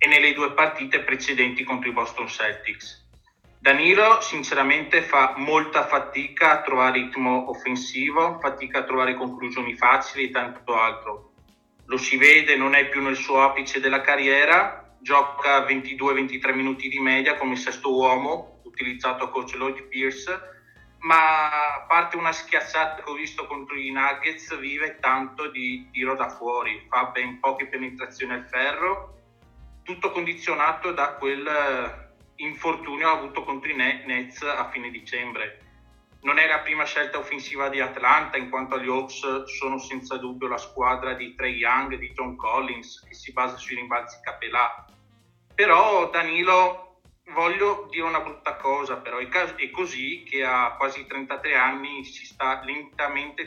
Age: 30-49